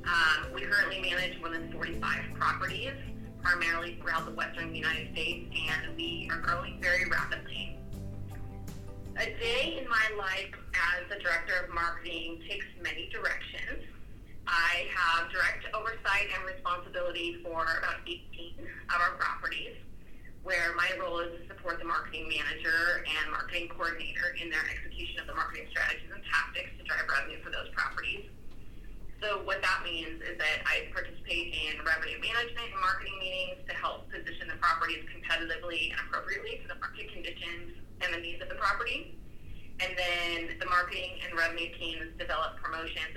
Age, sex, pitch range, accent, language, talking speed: 30-49, female, 160-185 Hz, American, English, 155 wpm